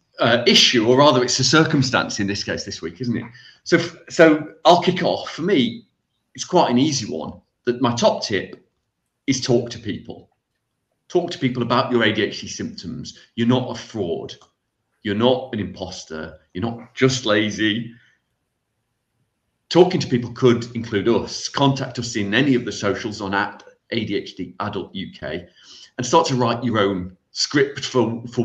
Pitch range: 105-130 Hz